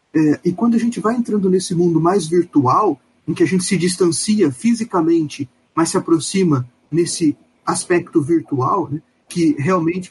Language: Portuguese